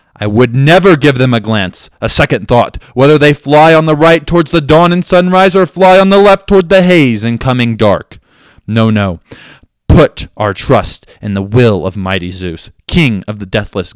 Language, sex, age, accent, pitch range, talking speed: English, male, 20-39, American, 95-135 Hz, 200 wpm